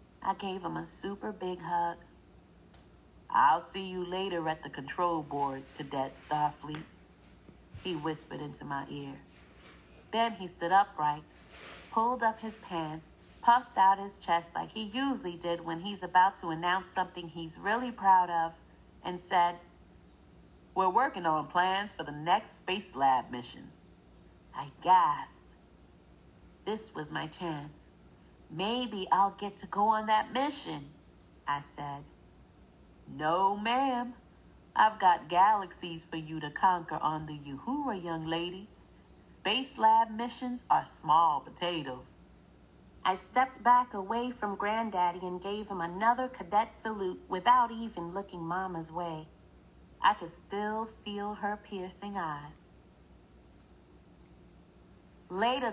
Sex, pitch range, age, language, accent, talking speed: female, 155-210 Hz, 40-59, English, American, 130 wpm